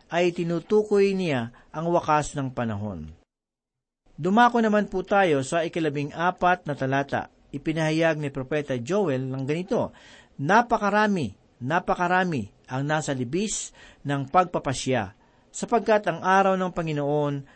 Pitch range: 140-185 Hz